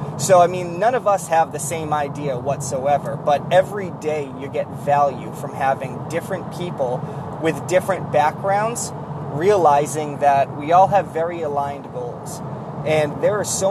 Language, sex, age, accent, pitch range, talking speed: English, male, 30-49, American, 145-175 Hz, 160 wpm